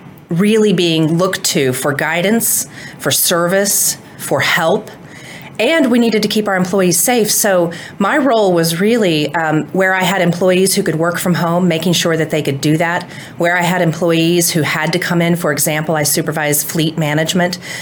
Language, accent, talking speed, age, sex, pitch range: English, American, 185 wpm, 30-49, female, 155-180 Hz